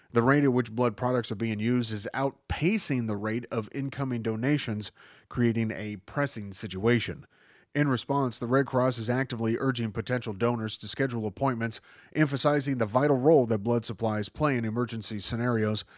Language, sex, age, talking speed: English, male, 30-49, 165 wpm